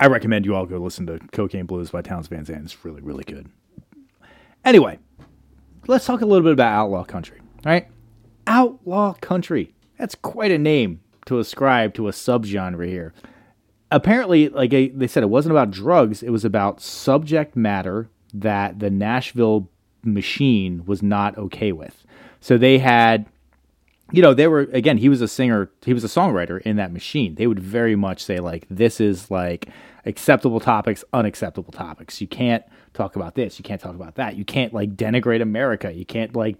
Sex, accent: male, American